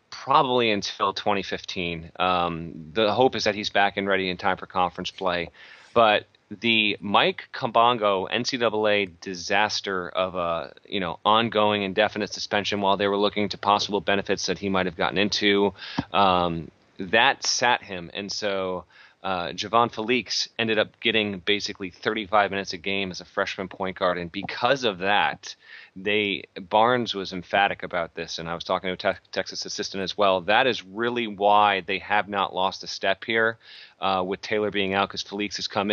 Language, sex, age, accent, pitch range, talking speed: English, male, 30-49, American, 95-115 Hz, 175 wpm